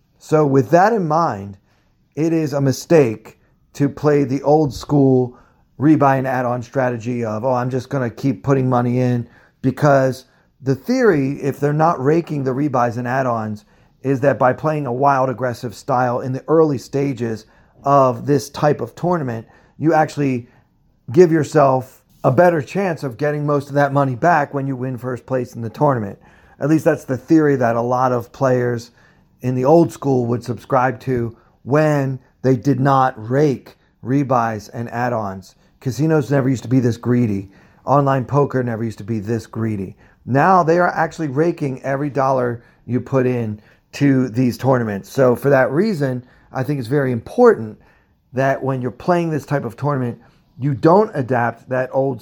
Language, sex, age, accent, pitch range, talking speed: English, male, 30-49, American, 120-145 Hz, 175 wpm